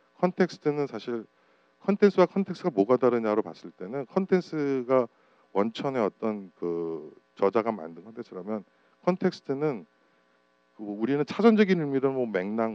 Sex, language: male, Korean